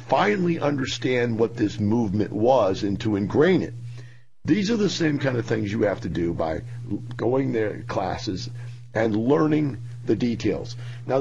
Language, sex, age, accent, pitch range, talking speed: English, male, 50-69, American, 110-135 Hz, 165 wpm